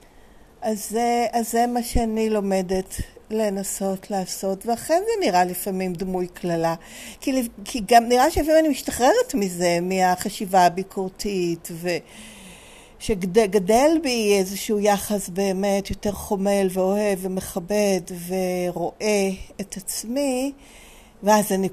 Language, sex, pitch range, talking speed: Hebrew, female, 185-235 Hz, 110 wpm